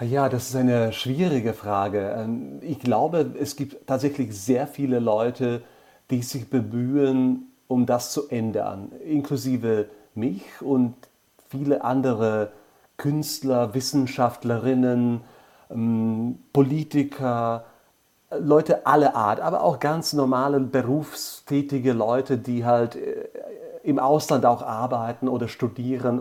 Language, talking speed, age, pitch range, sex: Slovak, 105 wpm, 40-59, 120-135 Hz, male